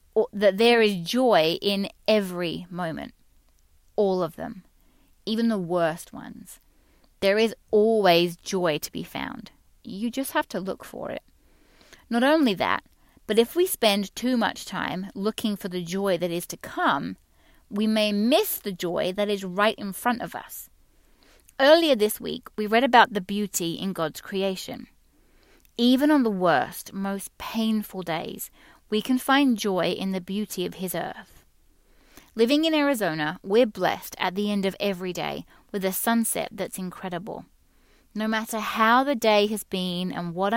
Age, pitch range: 30-49, 185-230 Hz